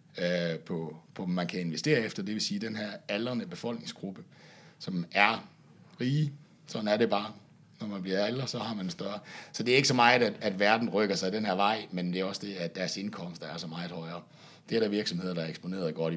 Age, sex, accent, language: 60-79, male, native, Danish